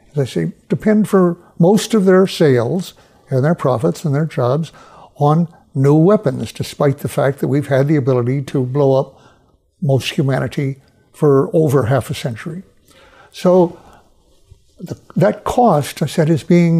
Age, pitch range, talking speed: 60-79, 135-165 Hz, 155 wpm